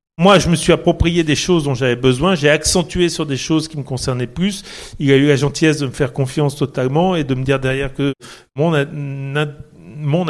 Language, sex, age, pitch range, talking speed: French, male, 40-59, 135-165 Hz, 220 wpm